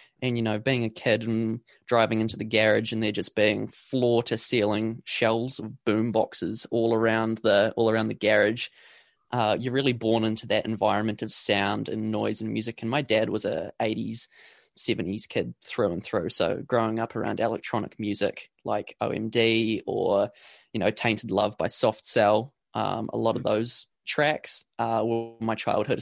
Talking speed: 180 wpm